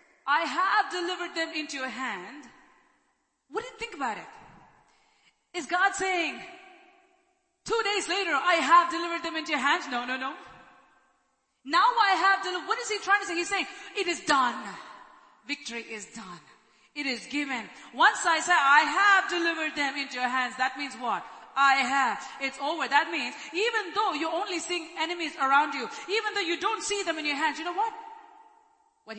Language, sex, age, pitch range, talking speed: English, female, 30-49, 230-375 Hz, 185 wpm